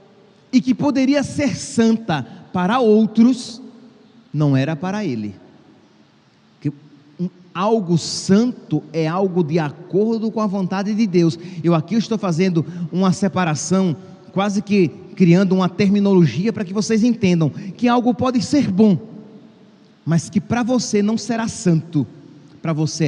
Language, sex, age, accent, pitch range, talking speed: Portuguese, male, 30-49, Brazilian, 170-235 Hz, 140 wpm